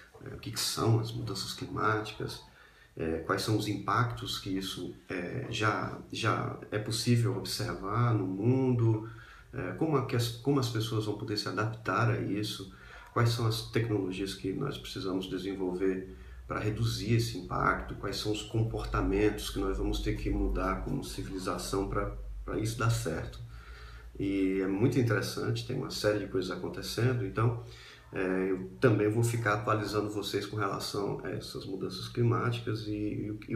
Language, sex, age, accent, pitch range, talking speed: Portuguese, male, 40-59, Brazilian, 95-120 Hz, 145 wpm